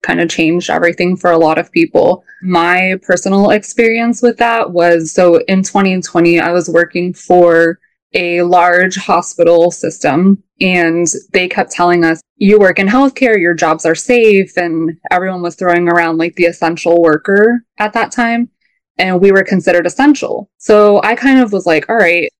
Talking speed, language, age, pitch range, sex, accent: 170 wpm, English, 20-39, 170-195 Hz, female, American